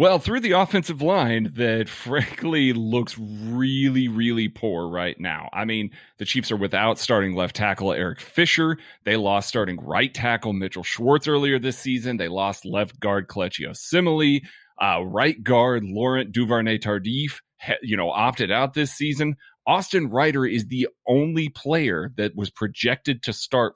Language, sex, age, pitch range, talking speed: English, male, 30-49, 110-145 Hz, 160 wpm